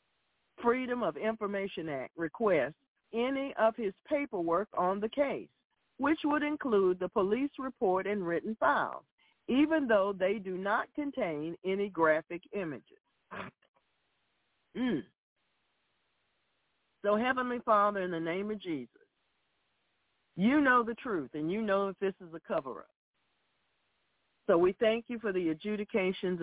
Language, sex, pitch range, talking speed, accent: English, female, 170-225 Hz, 135 wpm, American